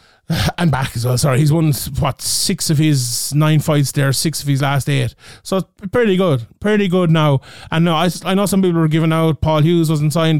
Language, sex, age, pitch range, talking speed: English, male, 20-39, 150-190 Hz, 230 wpm